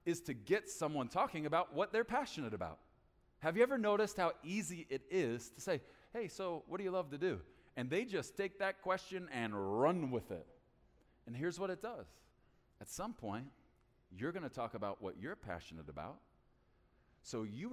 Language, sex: English, male